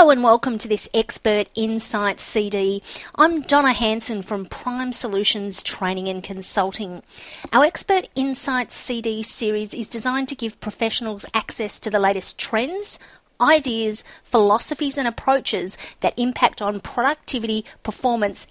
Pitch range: 210-270 Hz